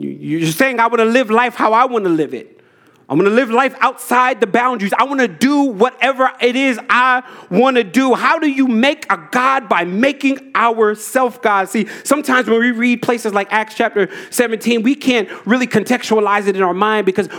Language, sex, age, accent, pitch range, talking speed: English, male, 30-49, American, 215-270 Hz, 210 wpm